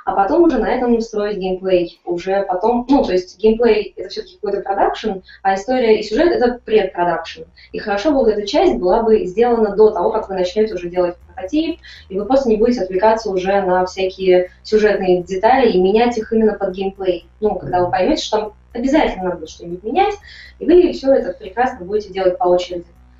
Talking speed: 195 wpm